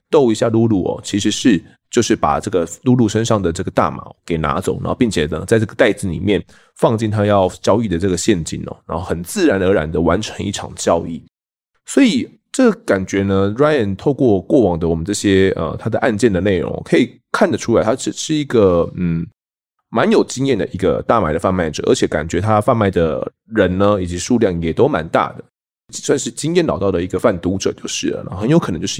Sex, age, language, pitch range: male, 20-39, Chinese, 95-130 Hz